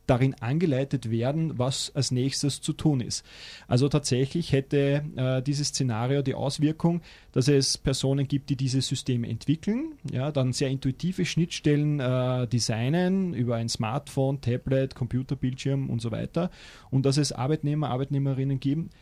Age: 30-49